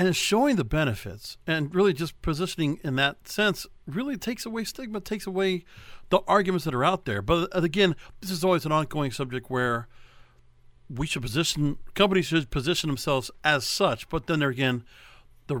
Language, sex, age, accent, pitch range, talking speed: English, male, 50-69, American, 140-190 Hz, 175 wpm